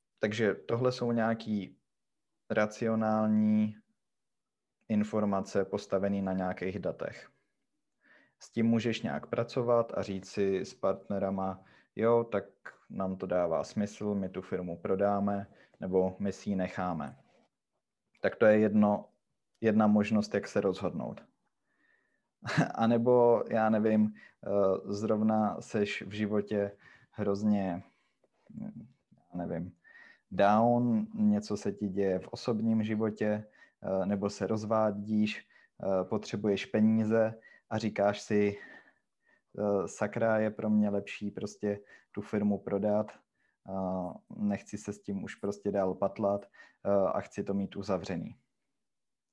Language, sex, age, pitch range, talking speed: Czech, male, 20-39, 100-110 Hz, 110 wpm